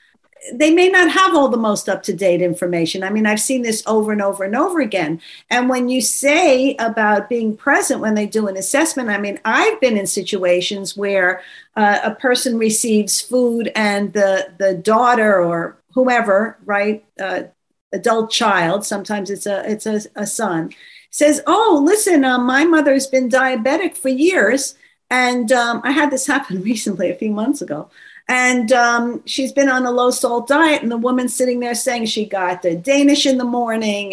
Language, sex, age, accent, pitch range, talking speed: English, female, 50-69, American, 200-265 Hz, 185 wpm